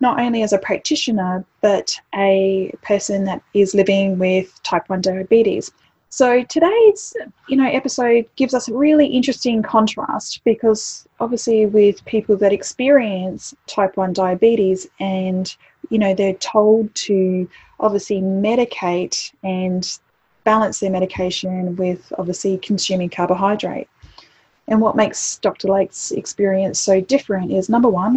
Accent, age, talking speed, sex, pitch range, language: Australian, 10-29, 130 wpm, female, 190-235 Hz, English